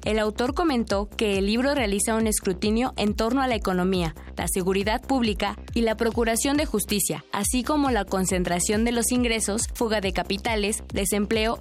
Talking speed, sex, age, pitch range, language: 170 wpm, female, 20-39, 190-235 Hz, Spanish